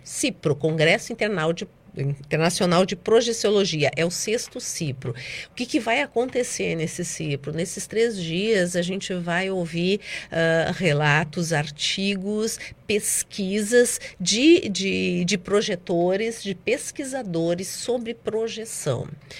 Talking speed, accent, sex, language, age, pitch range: 105 wpm, Brazilian, female, Portuguese, 50-69, 155-195 Hz